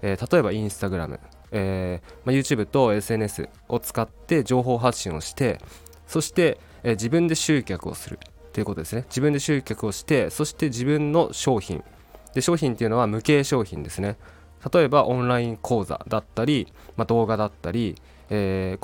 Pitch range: 95-130 Hz